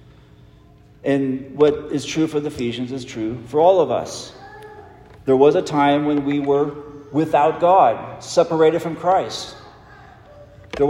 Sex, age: male, 40-59